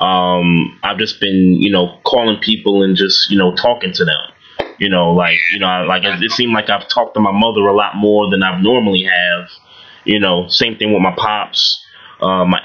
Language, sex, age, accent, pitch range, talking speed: English, male, 20-39, American, 90-105 Hz, 220 wpm